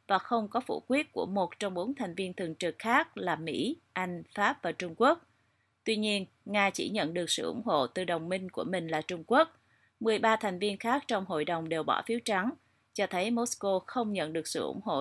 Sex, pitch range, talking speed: female, 170-225 Hz, 230 wpm